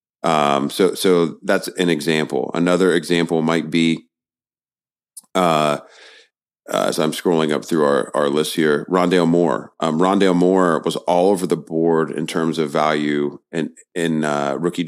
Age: 30-49